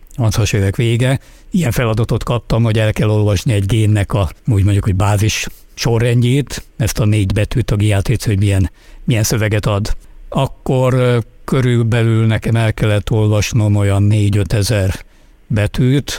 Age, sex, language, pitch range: 60-79, male, Hungarian, 105-125 Hz